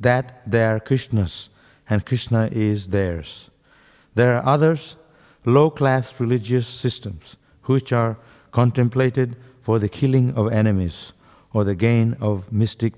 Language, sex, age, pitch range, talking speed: English, male, 60-79, 105-130 Hz, 125 wpm